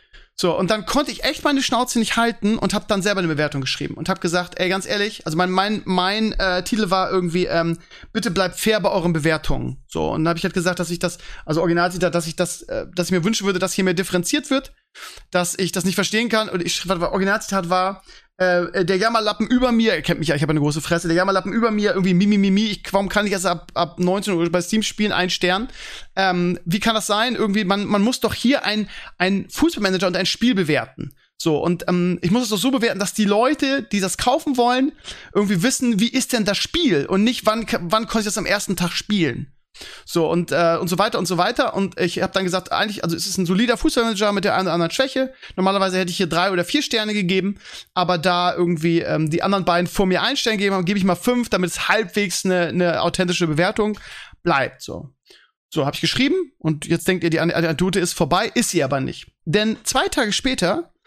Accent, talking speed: German, 240 wpm